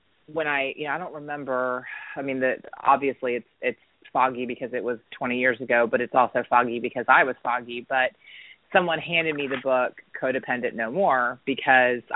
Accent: American